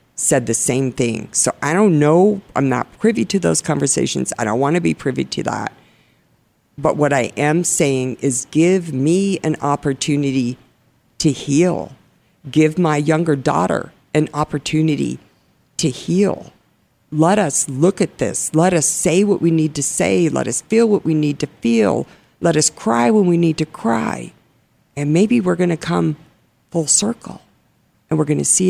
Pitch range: 135-165 Hz